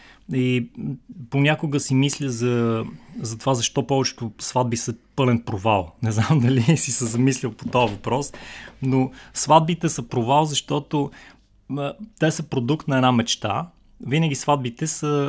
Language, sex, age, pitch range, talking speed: Bulgarian, male, 20-39, 120-145 Hz, 140 wpm